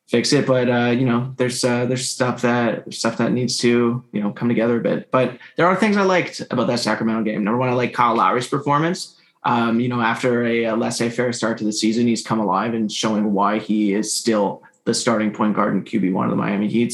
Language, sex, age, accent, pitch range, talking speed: English, male, 20-39, American, 115-130 Hz, 250 wpm